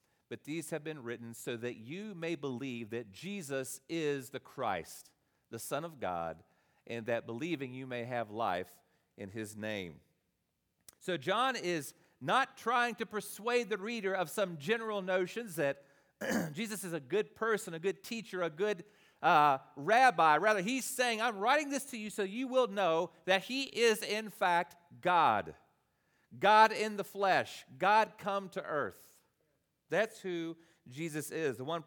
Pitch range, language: 150-205 Hz, English